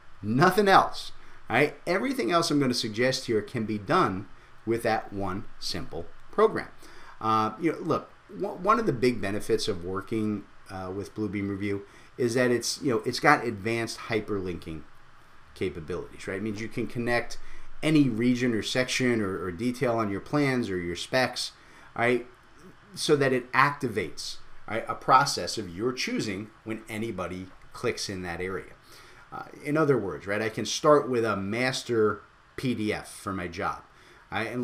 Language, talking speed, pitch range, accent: English, 165 wpm, 105-130 Hz, American